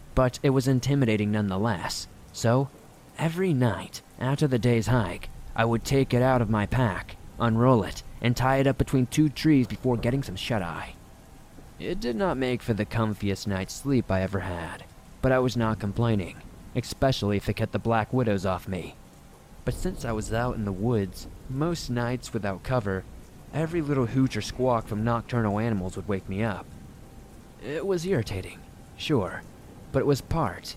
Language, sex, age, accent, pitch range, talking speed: English, male, 20-39, American, 100-130 Hz, 175 wpm